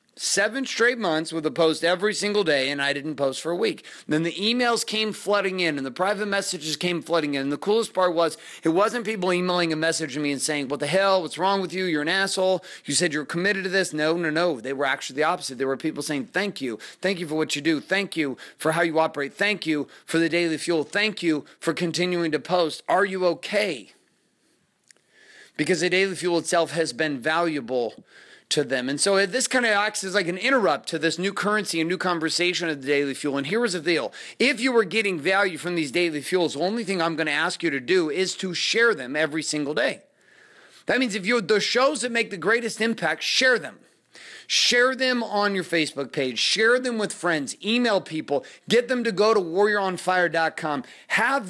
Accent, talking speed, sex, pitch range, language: American, 225 wpm, male, 155-205 Hz, English